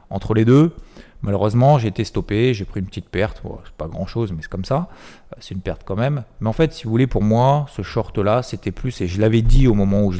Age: 30-49